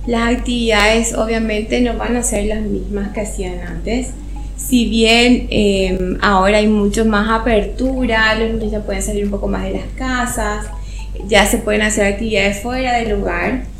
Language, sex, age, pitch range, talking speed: Spanish, female, 20-39, 205-245 Hz, 170 wpm